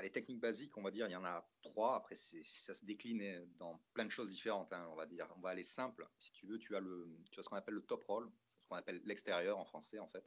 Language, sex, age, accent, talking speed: French, male, 40-59, French, 300 wpm